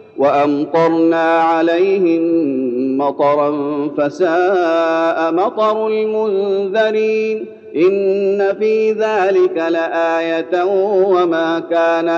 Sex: male